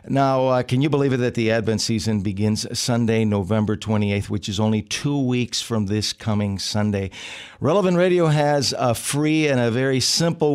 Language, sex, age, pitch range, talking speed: English, male, 50-69, 110-130 Hz, 180 wpm